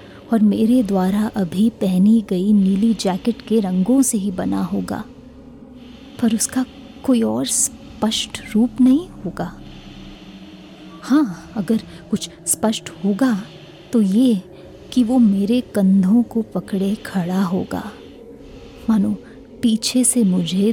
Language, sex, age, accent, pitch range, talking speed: Hindi, female, 20-39, native, 195-235 Hz, 120 wpm